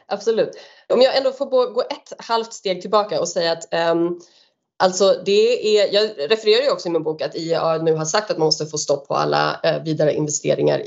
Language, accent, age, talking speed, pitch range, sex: Swedish, native, 20-39, 210 wpm, 165-230 Hz, female